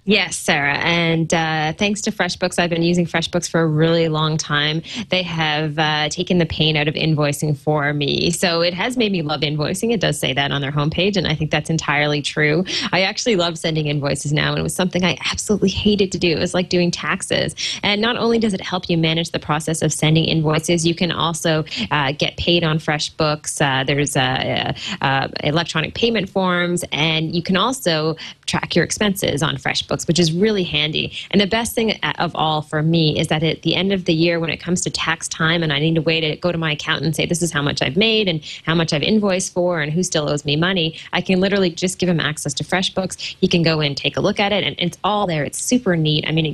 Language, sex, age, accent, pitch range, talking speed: English, female, 20-39, American, 150-180 Hz, 240 wpm